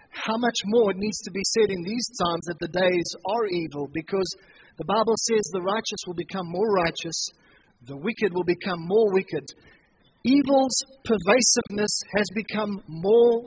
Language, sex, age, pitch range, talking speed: English, male, 40-59, 185-230 Hz, 165 wpm